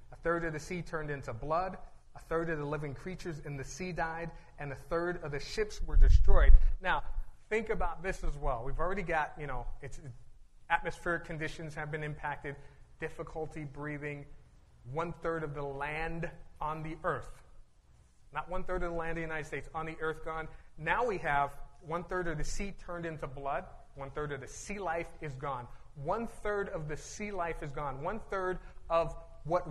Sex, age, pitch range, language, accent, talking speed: male, 30-49, 140-170 Hz, English, American, 200 wpm